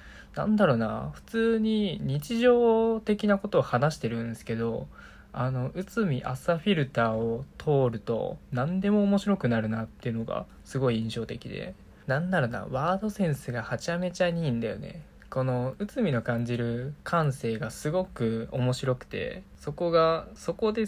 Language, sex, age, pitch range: Japanese, male, 20-39, 115-170 Hz